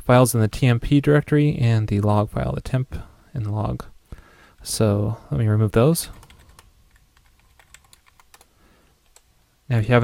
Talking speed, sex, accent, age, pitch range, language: 135 wpm, male, American, 20-39, 105-130 Hz, English